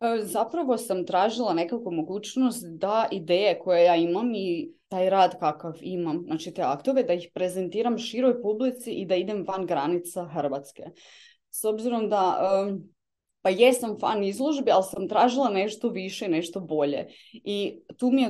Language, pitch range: Croatian, 180-235 Hz